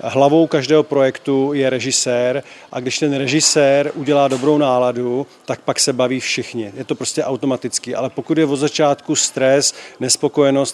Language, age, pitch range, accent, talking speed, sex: Czech, 40-59, 130-145 Hz, native, 155 wpm, male